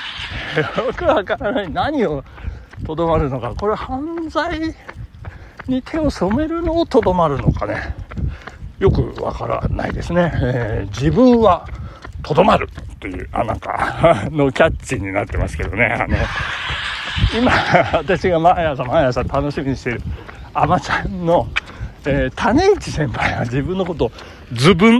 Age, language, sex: 60-79, Japanese, male